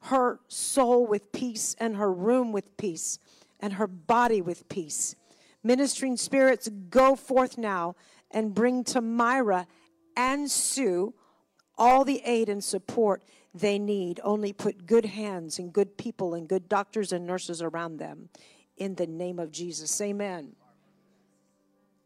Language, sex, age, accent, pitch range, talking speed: English, female, 50-69, American, 185-225 Hz, 140 wpm